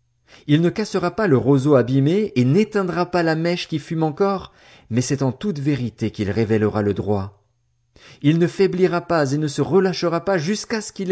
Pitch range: 120-165 Hz